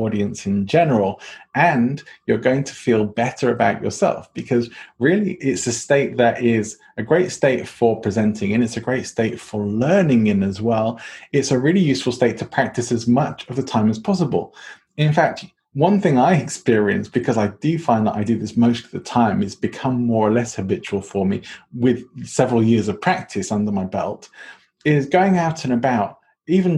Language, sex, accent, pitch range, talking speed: English, male, British, 115-145 Hz, 195 wpm